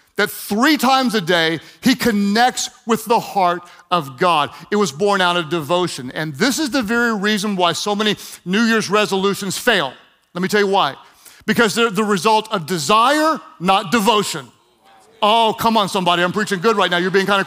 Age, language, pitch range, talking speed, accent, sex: 40-59, English, 200-265 Hz, 195 wpm, American, male